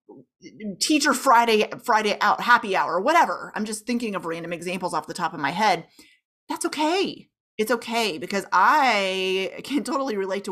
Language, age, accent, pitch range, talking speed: English, 30-49, American, 190-245 Hz, 165 wpm